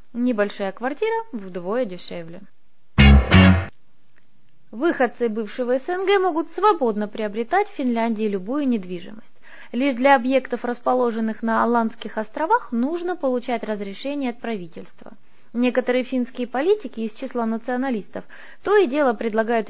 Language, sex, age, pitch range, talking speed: Russian, female, 20-39, 215-290 Hz, 110 wpm